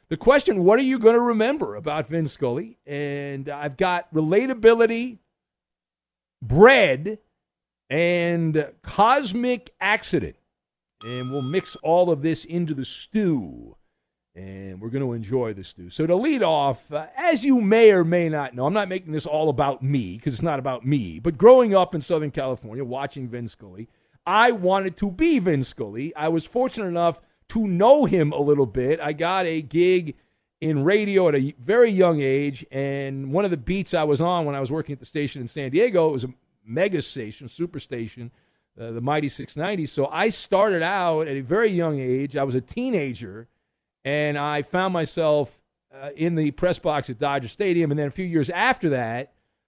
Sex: male